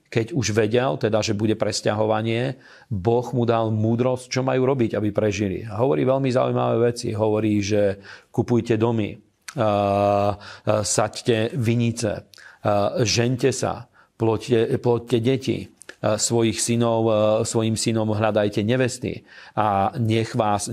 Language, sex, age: Slovak, male, 40-59